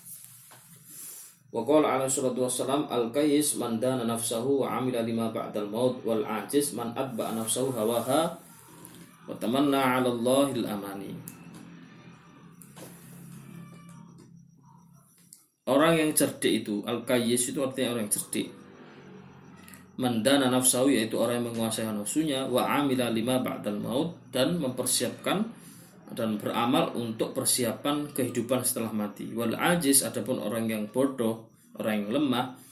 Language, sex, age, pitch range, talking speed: Malay, male, 20-39, 115-150 Hz, 115 wpm